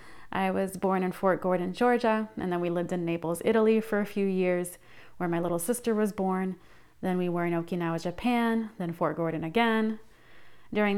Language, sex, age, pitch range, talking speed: English, female, 20-39, 175-210 Hz, 190 wpm